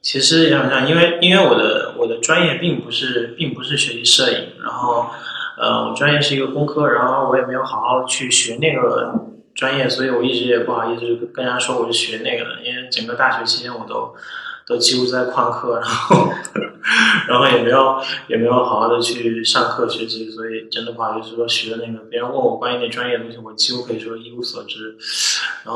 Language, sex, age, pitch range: Chinese, male, 20-39, 115-145 Hz